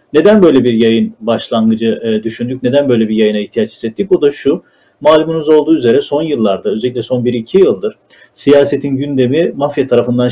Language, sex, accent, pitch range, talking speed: Turkish, male, native, 120-150 Hz, 170 wpm